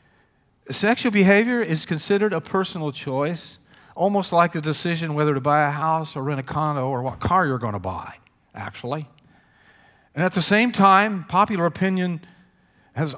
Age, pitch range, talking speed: 50-69, 135-175 Hz, 165 wpm